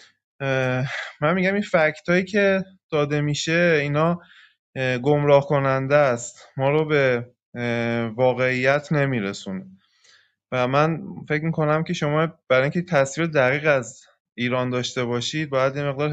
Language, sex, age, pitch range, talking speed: Persian, male, 20-39, 120-155 Hz, 125 wpm